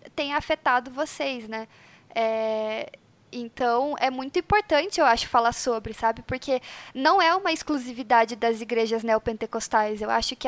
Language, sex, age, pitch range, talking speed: Portuguese, female, 10-29, 235-295 Hz, 145 wpm